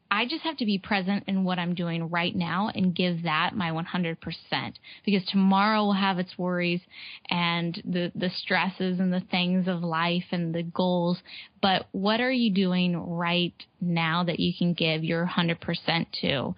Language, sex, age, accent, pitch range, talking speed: English, female, 10-29, American, 170-195 Hz, 175 wpm